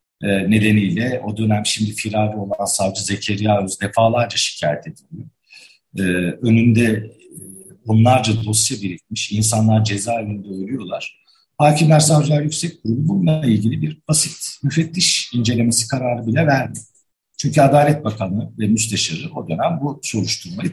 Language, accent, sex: Turkish, native, male